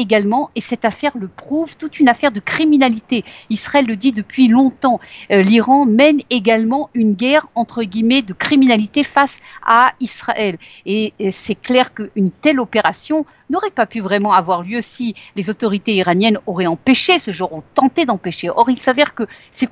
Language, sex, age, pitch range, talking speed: Italian, female, 50-69, 195-260 Hz, 170 wpm